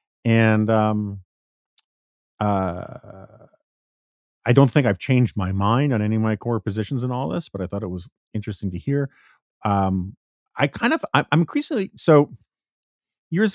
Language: English